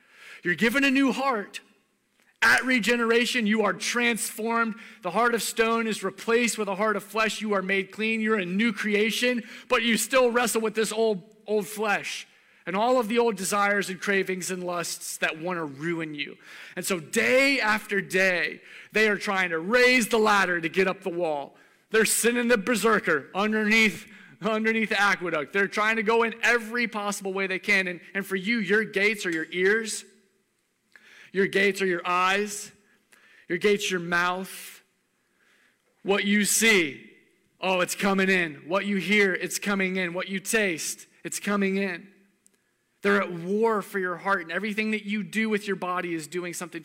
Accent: American